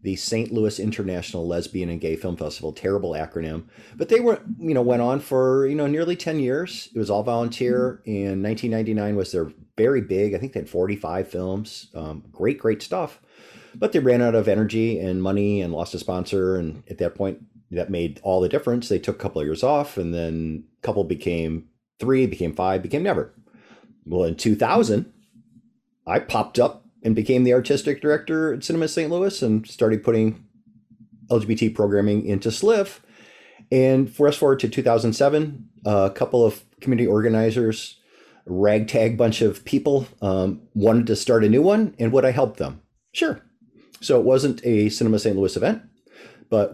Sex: male